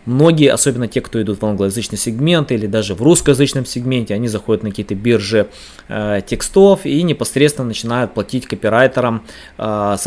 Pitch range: 105-135 Hz